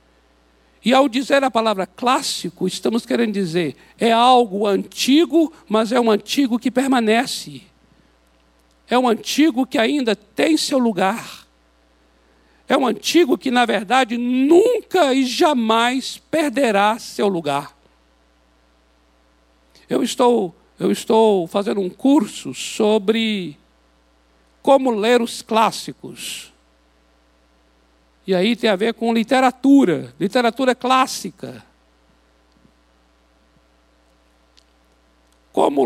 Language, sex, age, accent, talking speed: Portuguese, male, 60-79, Brazilian, 100 wpm